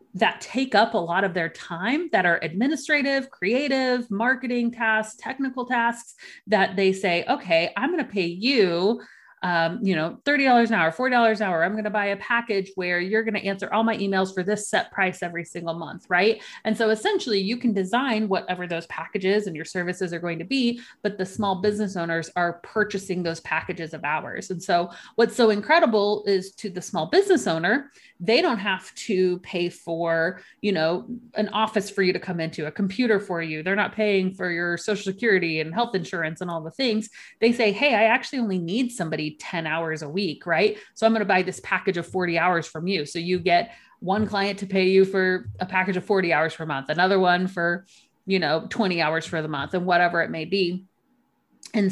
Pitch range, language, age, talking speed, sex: 175-220 Hz, English, 30-49, 215 wpm, female